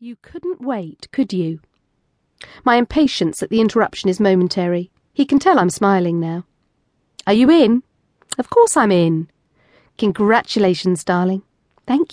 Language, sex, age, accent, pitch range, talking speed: English, female, 40-59, British, 175-240 Hz, 140 wpm